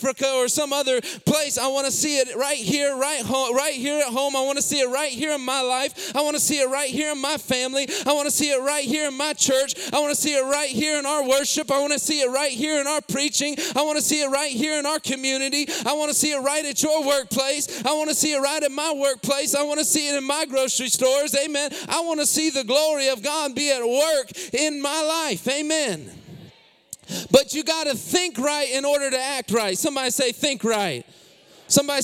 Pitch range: 265-300 Hz